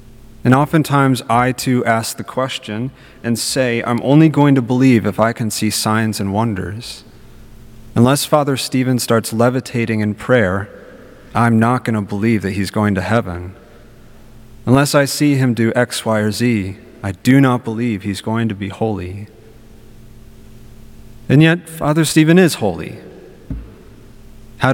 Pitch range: 110-130 Hz